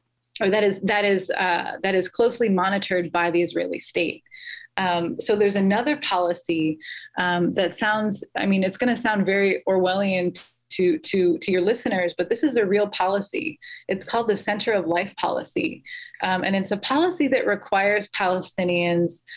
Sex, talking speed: female, 170 wpm